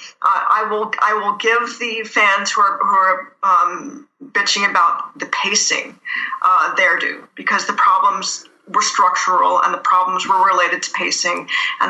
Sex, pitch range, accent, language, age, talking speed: female, 195-260 Hz, American, English, 40-59, 160 wpm